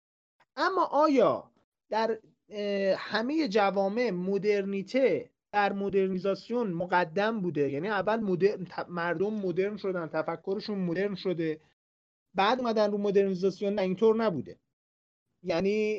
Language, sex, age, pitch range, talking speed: Persian, male, 40-59, 190-260 Hz, 100 wpm